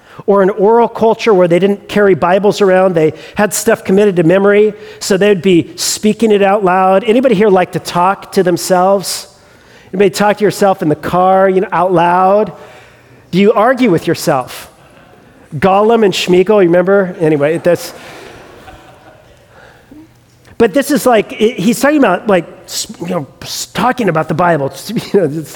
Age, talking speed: 40-59, 160 wpm